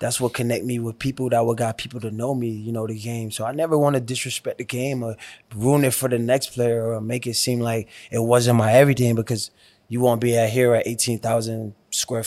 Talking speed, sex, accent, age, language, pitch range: 245 wpm, male, American, 20-39, English, 115-125 Hz